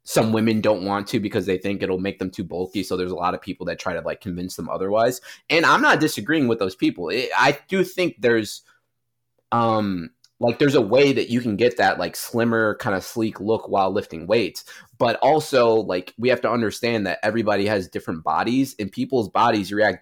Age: 20-39